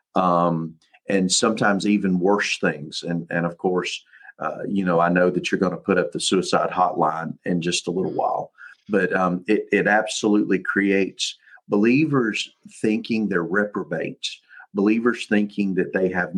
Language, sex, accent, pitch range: English, male, American, 95-110 Hz